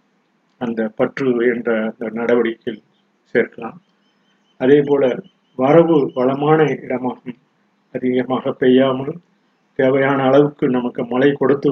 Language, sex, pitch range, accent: Tamil, male, 125-145 Hz, native